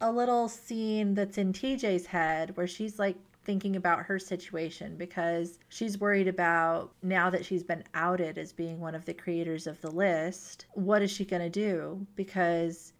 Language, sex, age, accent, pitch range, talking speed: English, female, 30-49, American, 170-195 Hz, 175 wpm